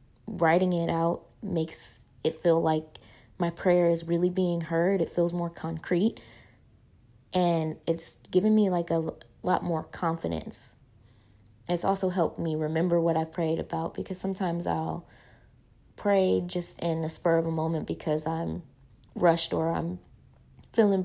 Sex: female